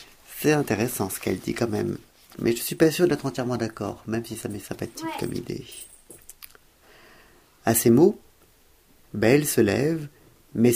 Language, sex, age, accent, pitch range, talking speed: French, male, 50-69, French, 100-130 Hz, 165 wpm